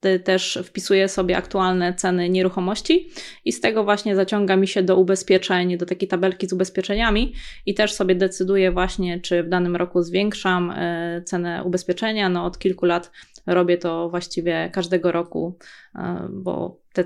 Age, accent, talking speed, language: 20-39, native, 150 wpm, Polish